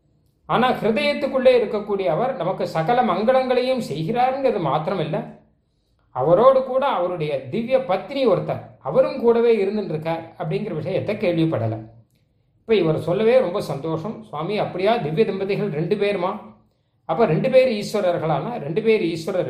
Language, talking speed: Tamil, 125 wpm